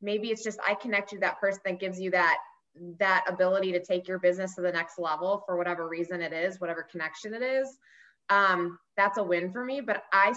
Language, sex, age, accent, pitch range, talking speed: English, female, 20-39, American, 190-260 Hz, 230 wpm